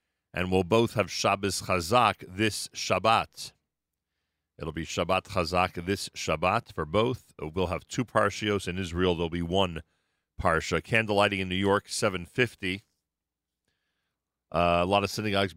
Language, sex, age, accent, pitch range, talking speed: English, male, 40-59, American, 85-110 Hz, 145 wpm